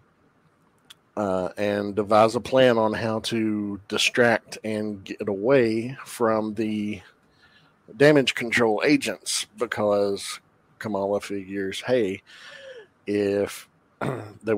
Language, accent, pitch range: English, American, 100-115 Hz